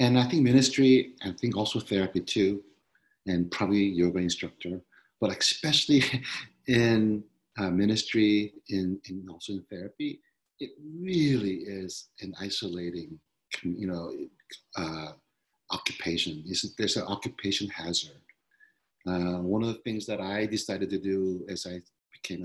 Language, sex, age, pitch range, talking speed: English, male, 50-69, 90-110 Hz, 135 wpm